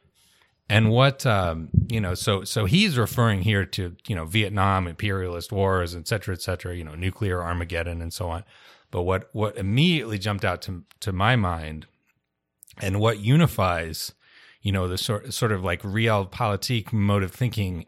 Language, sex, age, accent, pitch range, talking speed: English, male, 30-49, American, 95-115 Hz, 170 wpm